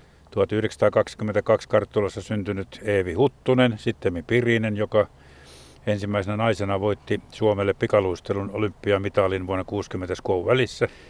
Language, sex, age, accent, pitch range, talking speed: Finnish, male, 50-69, native, 100-120 Hz, 95 wpm